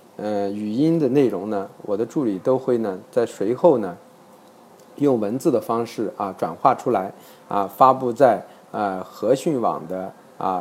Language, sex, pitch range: Chinese, male, 110-135 Hz